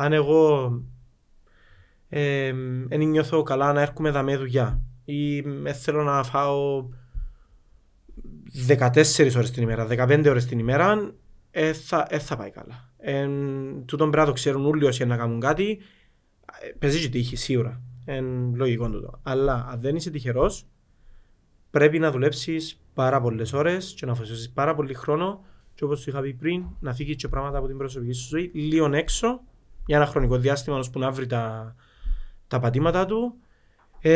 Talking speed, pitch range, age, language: 145 wpm, 120-150 Hz, 20-39, Greek